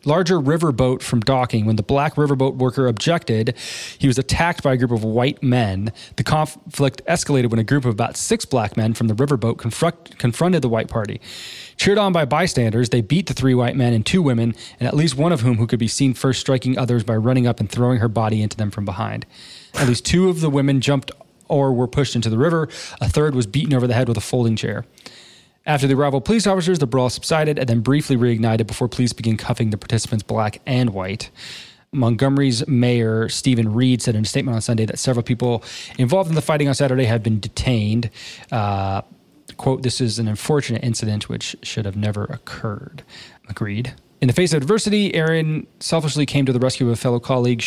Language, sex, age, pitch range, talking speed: English, male, 20-39, 115-140 Hz, 215 wpm